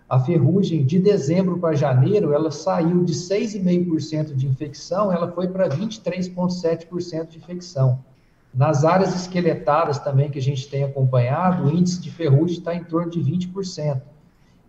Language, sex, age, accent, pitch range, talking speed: Portuguese, male, 50-69, Brazilian, 135-170 Hz, 145 wpm